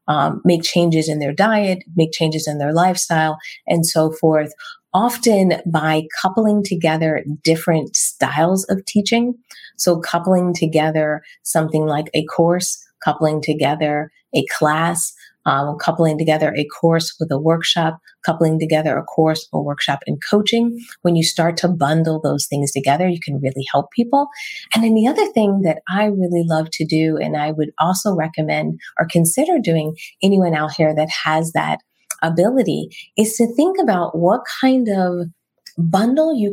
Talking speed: 160 wpm